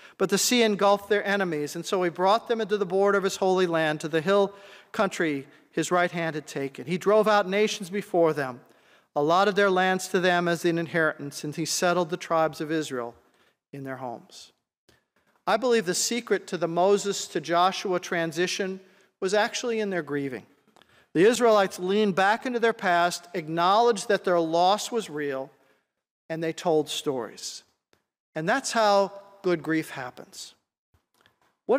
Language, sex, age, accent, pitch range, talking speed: English, male, 50-69, American, 160-205 Hz, 165 wpm